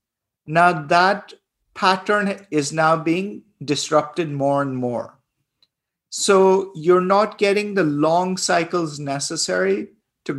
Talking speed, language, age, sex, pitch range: 110 wpm, English, 50-69, male, 150-185 Hz